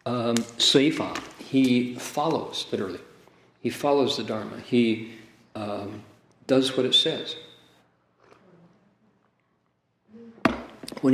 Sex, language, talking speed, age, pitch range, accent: male, English, 85 wpm, 50-69, 110-130 Hz, American